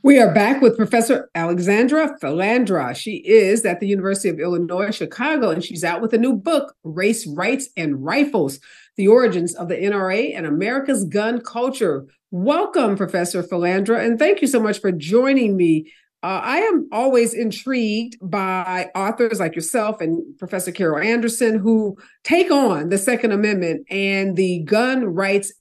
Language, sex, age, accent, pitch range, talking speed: English, female, 50-69, American, 195-260 Hz, 160 wpm